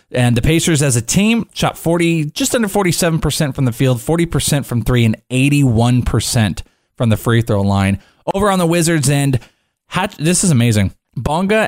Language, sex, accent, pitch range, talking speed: English, male, American, 115-150 Hz, 170 wpm